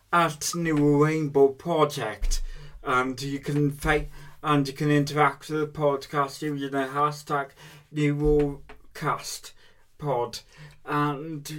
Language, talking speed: English, 105 wpm